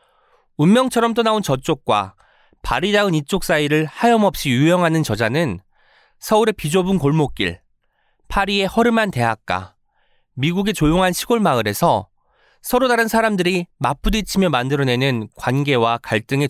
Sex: male